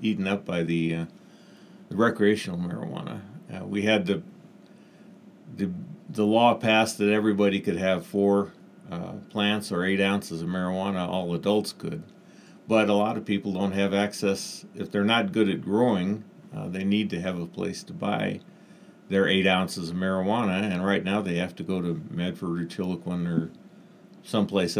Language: English